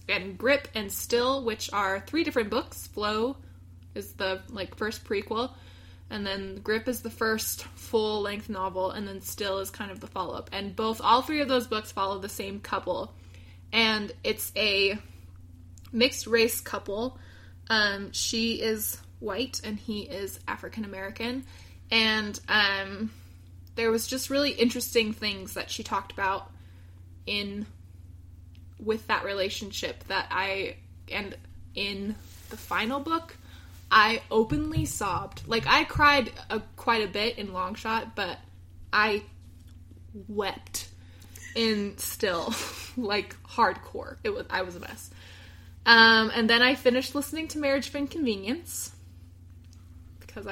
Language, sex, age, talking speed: English, female, 20-39, 140 wpm